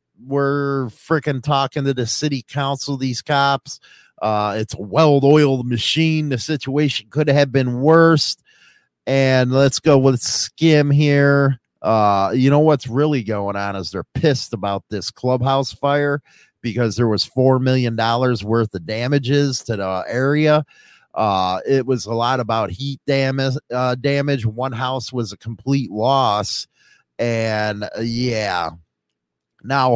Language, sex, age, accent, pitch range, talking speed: English, male, 30-49, American, 115-145 Hz, 140 wpm